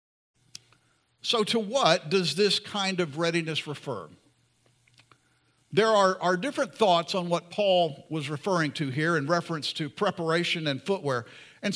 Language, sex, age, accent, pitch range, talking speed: English, male, 50-69, American, 160-210 Hz, 145 wpm